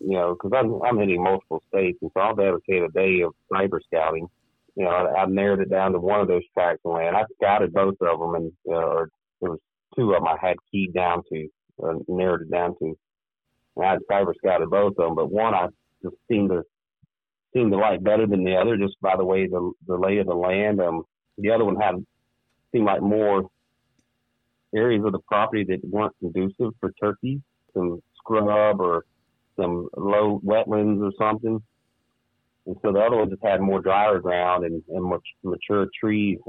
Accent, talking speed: American, 205 wpm